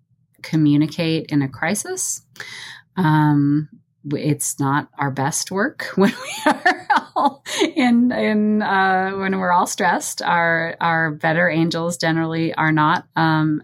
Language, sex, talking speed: English, female, 125 wpm